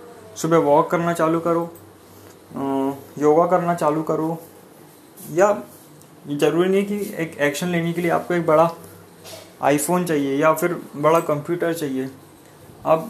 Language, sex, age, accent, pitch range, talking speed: Hindi, male, 20-39, native, 145-180 Hz, 135 wpm